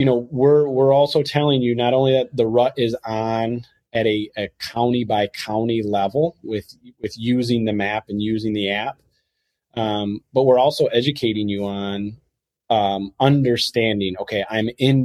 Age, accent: 30-49, American